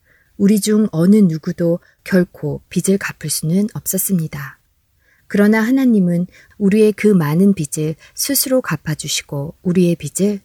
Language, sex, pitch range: Korean, female, 155-200 Hz